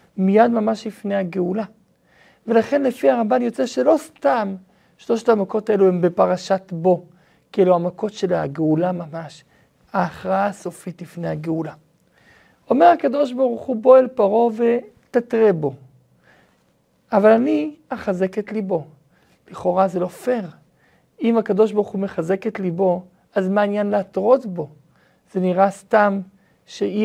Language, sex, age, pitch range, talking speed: Hebrew, male, 50-69, 185-230 Hz, 125 wpm